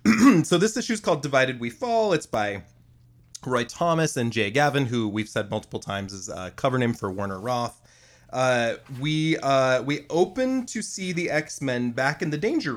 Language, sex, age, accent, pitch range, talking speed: English, male, 30-49, American, 105-135 Hz, 195 wpm